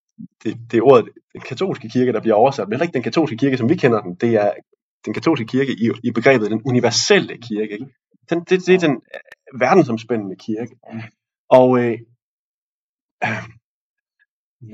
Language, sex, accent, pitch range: Danish, male, native, 110-140 Hz